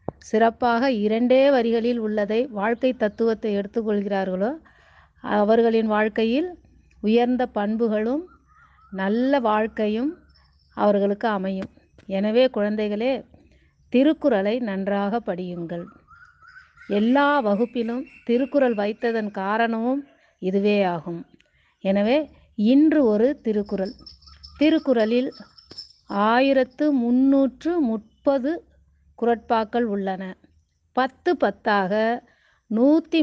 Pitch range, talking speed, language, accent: 210-270 Hz, 70 wpm, Tamil, native